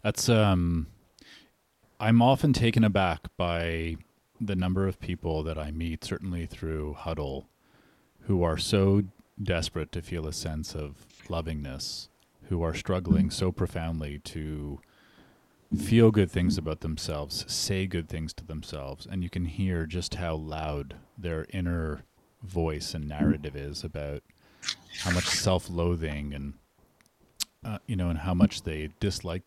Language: English